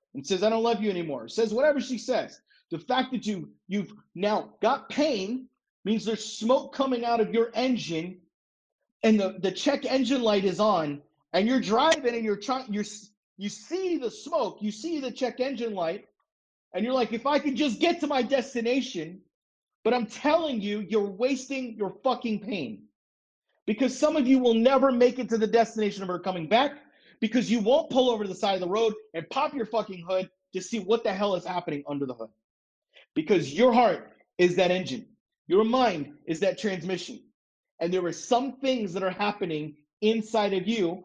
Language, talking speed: English, 195 wpm